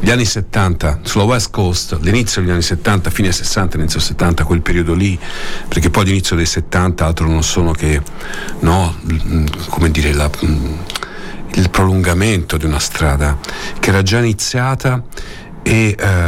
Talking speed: 150 wpm